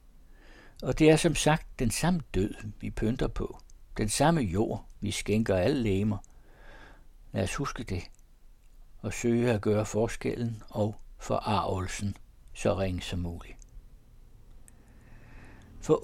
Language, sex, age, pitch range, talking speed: Danish, male, 60-79, 95-125 Hz, 125 wpm